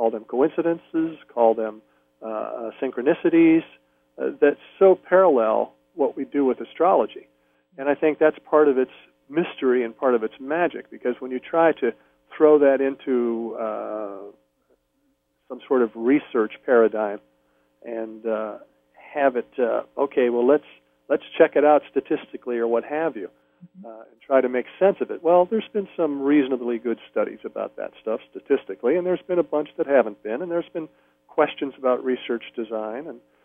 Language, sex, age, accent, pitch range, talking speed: English, male, 50-69, American, 110-150 Hz, 170 wpm